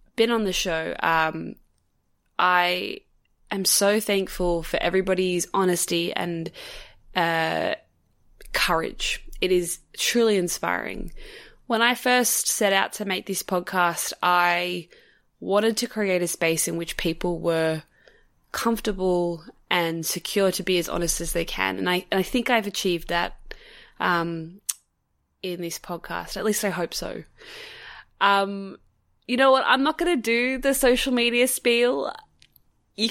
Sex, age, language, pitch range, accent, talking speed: female, 20-39, English, 175-240 Hz, Australian, 145 wpm